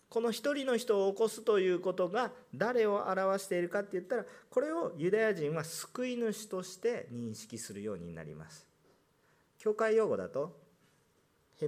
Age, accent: 40-59, native